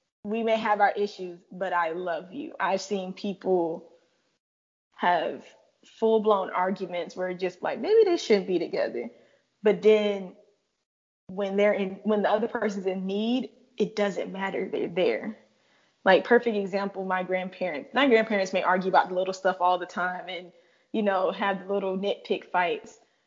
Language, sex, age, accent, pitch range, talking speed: English, female, 20-39, American, 185-215 Hz, 160 wpm